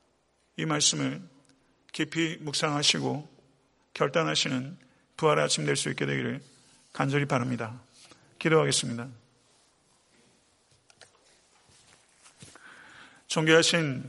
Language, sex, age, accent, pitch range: Korean, male, 40-59, native, 140-170 Hz